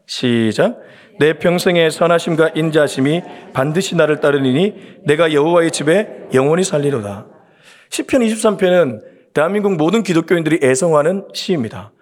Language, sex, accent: Korean, male, native